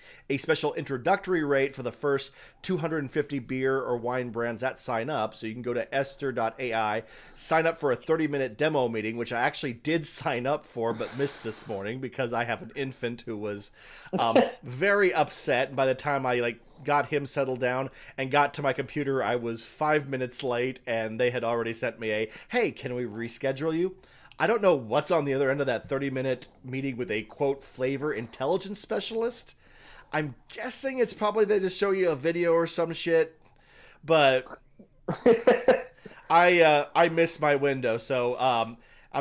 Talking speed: 190 wpm